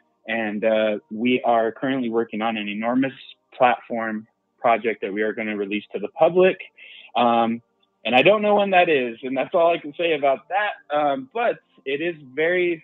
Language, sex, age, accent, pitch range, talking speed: Spanish, male, 20-39, American, 115-150 Hz, 190 wpm